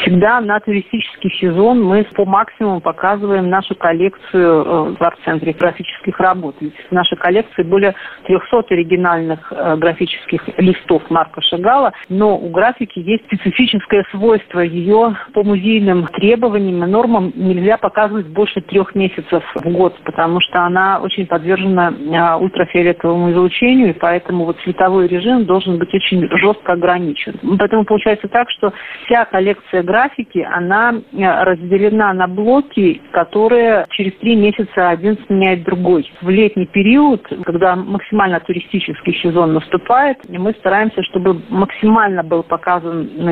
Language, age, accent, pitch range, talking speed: Russian, 40-59, native, 175-205 Hz, 130 wpm